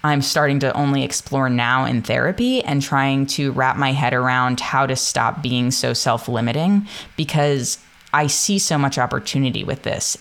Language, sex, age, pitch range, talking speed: English, female, 20-39, 125-155 Hz, 170 wpm